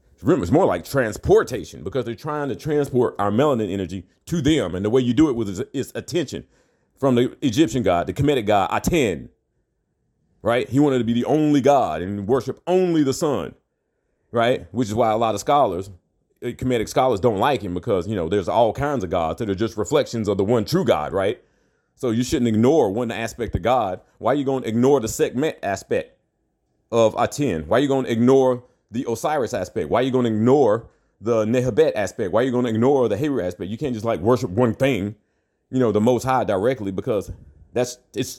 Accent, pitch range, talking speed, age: American, 115-145 Hz, 215 wpm, 40-59